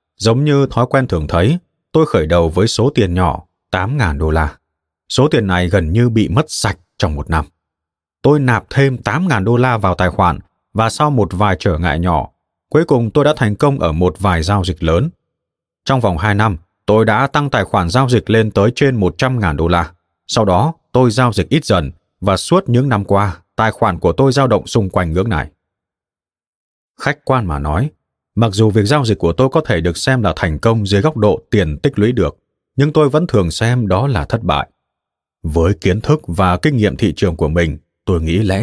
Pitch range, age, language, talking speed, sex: 90-135 Hz, 20-39, Vietnamese, 220 wpm, male